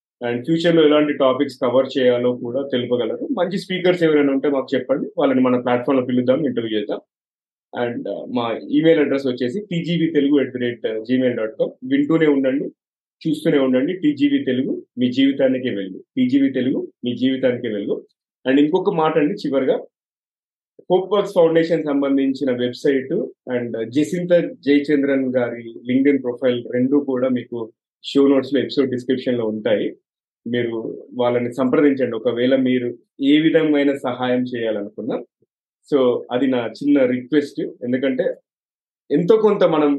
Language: Telugu